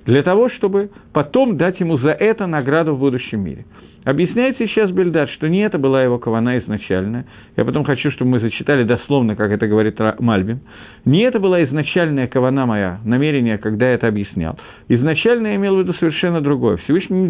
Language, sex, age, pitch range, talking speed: Russian, male, 50-69, 120-180 Hz, 185 wpm